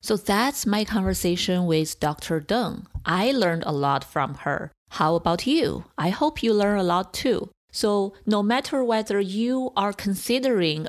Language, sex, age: English, female, 30-49